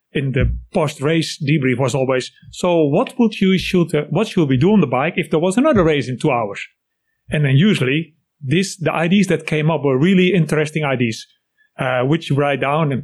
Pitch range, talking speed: 140-190 Hz, 210 wpm